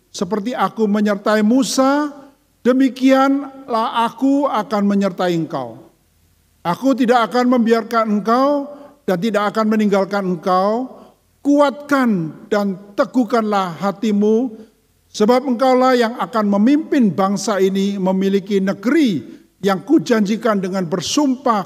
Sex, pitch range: male, 180-245 Hz